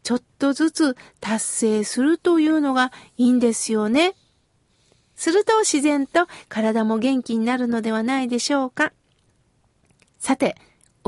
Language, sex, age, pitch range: Japanese, female, 50-69, 230-330 Hz